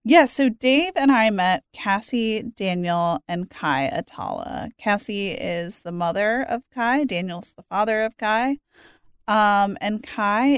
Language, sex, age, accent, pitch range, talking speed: English, female, 30-49, American, 175-215 Hz, 140 wpm